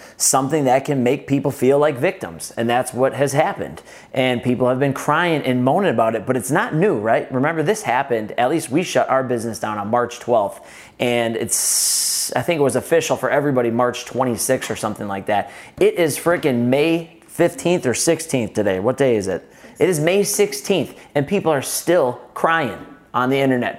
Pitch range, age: 125-145 Hz, 30-49